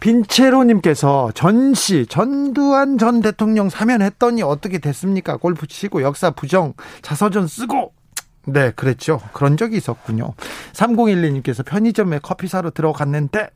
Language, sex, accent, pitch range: Korean, male, native, 145-205 Hz